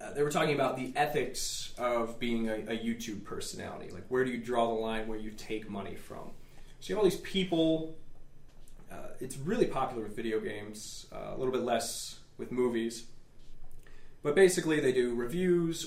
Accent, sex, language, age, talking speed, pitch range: American, male, English, 20-39, 190 wpm, 115-145 Hz